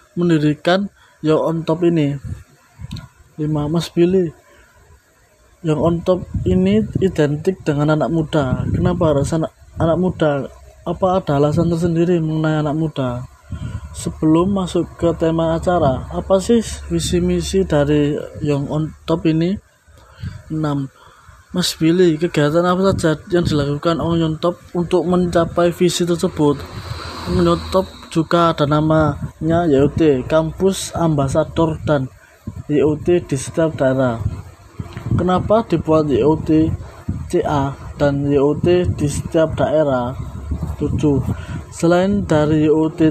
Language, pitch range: Indonesian, 145-175 Hz